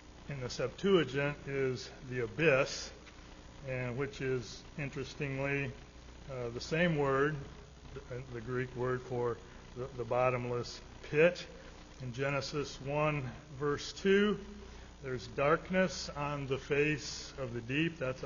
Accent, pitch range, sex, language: American, 125-150 Hz, male, English